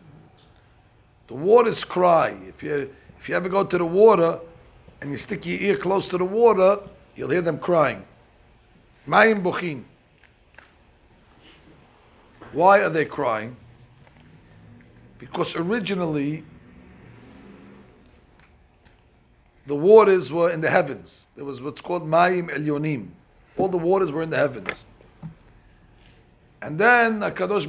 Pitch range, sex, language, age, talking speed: 145-200 Hz, male, English, 60-79, 120 wpm